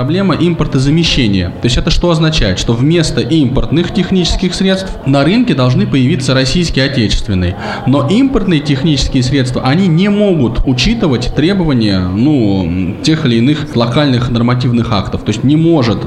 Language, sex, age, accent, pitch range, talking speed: Russian, male, 20-39, native, 115-150 Hz, 140 wpm